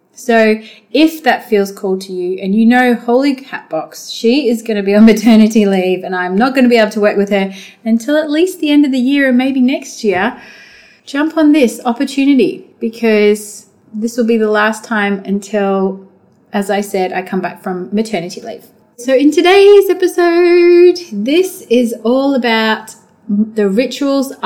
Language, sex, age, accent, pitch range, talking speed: English, female, 30-49, Australian, 205-260 Hz, 185 wpm